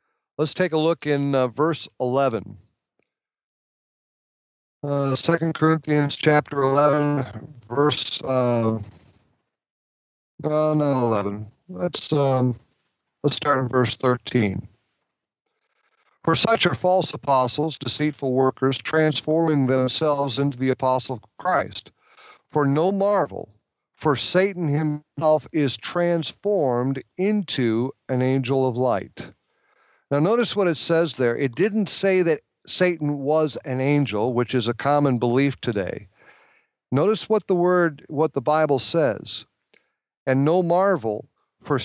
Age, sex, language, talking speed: 50-69, male, English, 120 wpm